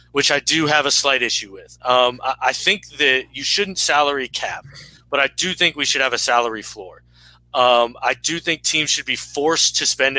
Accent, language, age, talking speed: American, English, 20-39, 220 wpm